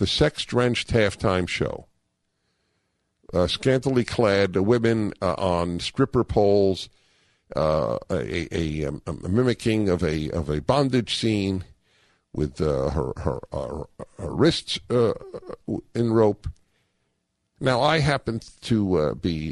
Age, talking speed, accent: 50-69, 125 wpm, American